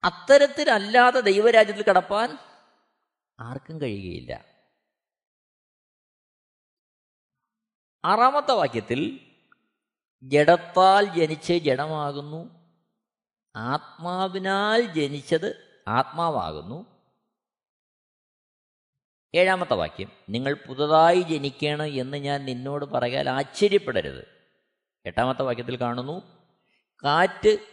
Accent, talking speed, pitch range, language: native, 60 wpm, 130-205 Hz, Malayalam